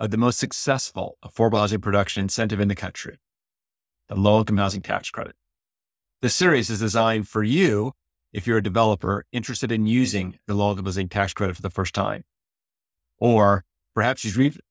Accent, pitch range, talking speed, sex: American, 100-120 Hz, 175 wpm, male